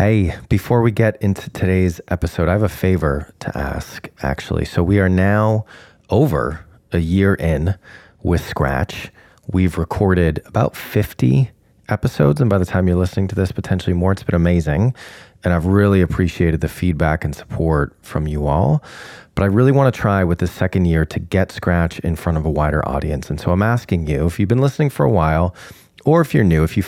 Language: English